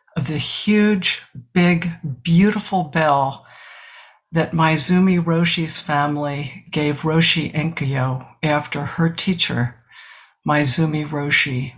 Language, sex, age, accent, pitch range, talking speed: English, female, 60-79, American, 150-185 Hz, 90 wpm